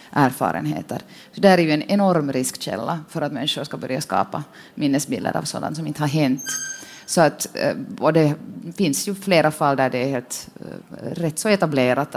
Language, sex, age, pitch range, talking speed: Swedish, female, 30-49, 135-160 Hz, 175 wpm